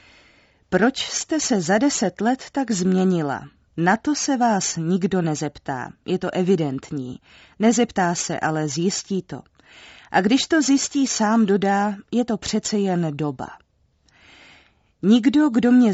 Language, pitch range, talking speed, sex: Czech, 165-215 Hz, 135 wpm, female